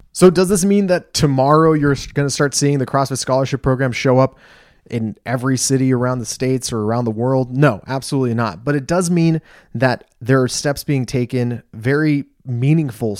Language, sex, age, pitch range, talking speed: English, male, 20-39, 115-145 Hz, 190 wpm